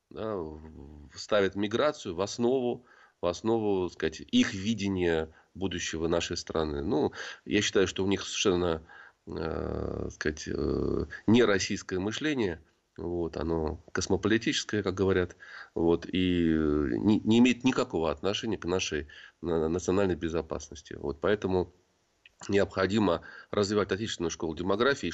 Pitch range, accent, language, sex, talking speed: 85-110 Hz, native, Russian, male, 110 wpm